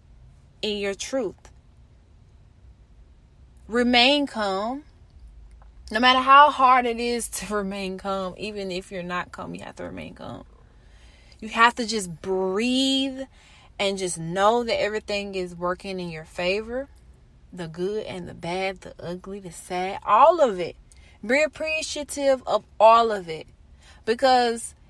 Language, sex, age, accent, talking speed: English, female, 20-39, American, 140 wpm